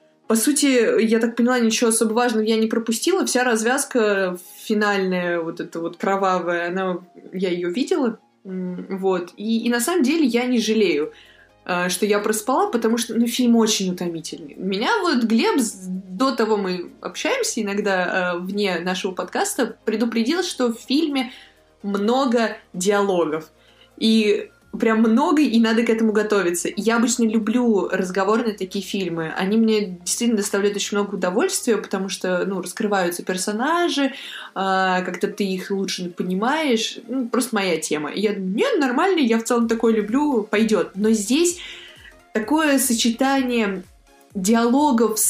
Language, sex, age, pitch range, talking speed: Russian, female, 20-39, 195-240 Hz, 140 wpm